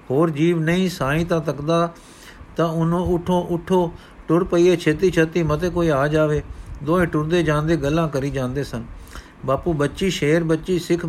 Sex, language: male, Punjabi